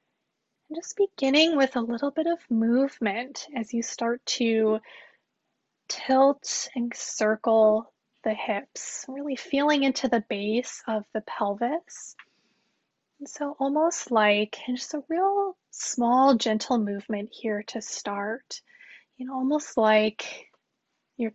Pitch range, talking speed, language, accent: 220-275 Hz, 125 wpm, English, American